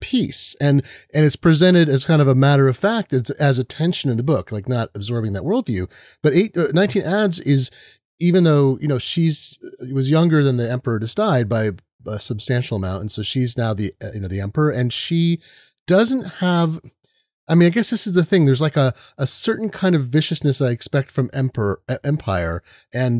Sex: male